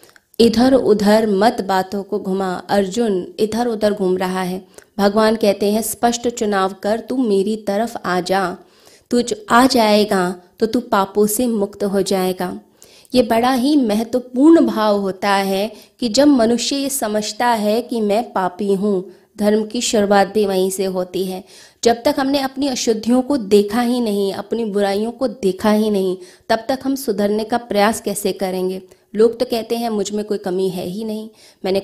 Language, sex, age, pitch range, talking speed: Hindi, female, 20-39, 195-230 Hz, 175 wpm